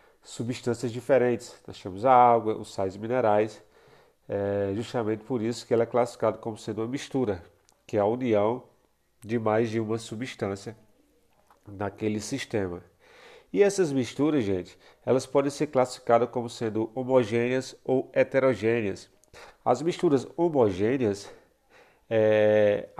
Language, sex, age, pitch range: Portuguese, male, 40-59, 105-130 Hz